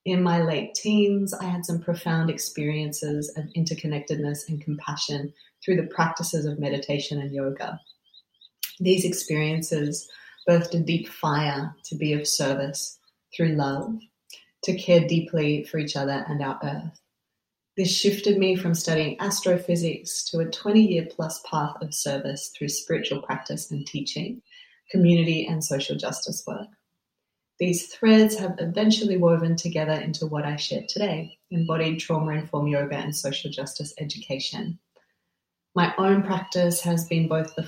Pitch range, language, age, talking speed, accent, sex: 150-175 Hz, English, 30-49, 140 wpm, Australian, female